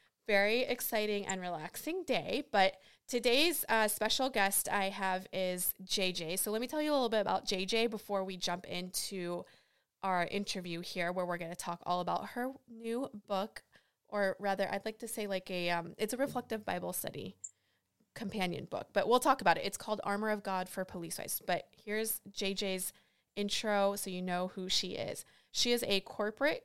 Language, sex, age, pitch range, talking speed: English, female, 20-39, 185-225 Hz, 190 wpm